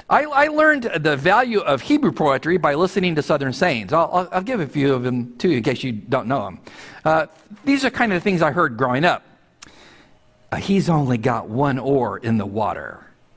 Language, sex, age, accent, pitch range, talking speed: English, male, 50-69, American, 145-200 Hz, 220 wpm